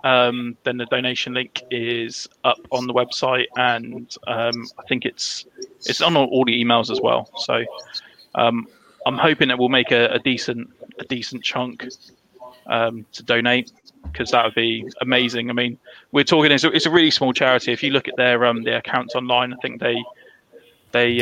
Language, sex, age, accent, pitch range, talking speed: English, male, 20-39, British, 120-140 Hz, 190 wpm